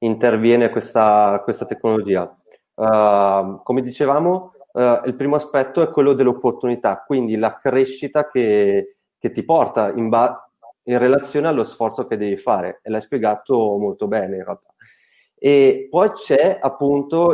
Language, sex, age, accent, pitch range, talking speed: Italian, male, 30-49, native, 110-140 Hz, 140 wpm